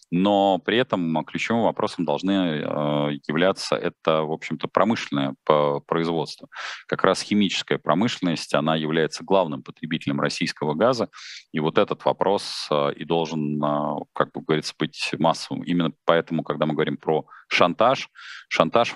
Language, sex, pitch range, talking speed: Russian, male, 75-85 Hz, 130 wpm